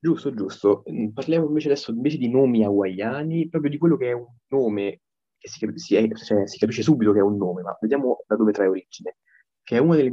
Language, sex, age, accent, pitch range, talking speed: Italian, male, 20-39, native, 105-140 Hz, 220 wpm